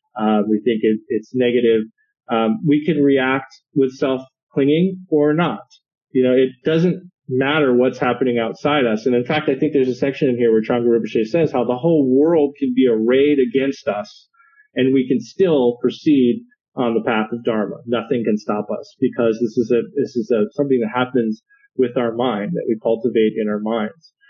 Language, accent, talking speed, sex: English, American, 200 wpm, male